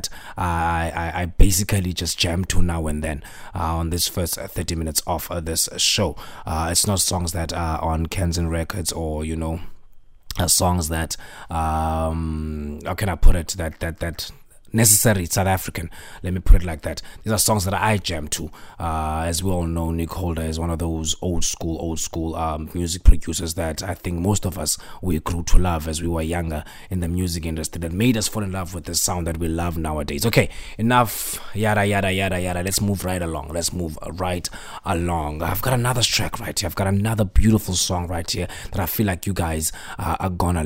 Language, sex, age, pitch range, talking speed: English, male, 20-39, 85-105 Hz, 210 wpm